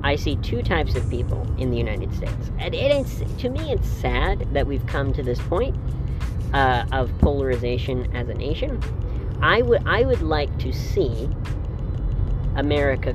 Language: English